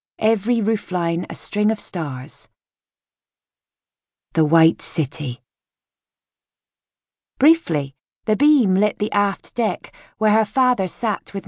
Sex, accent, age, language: female, British, 30-49, English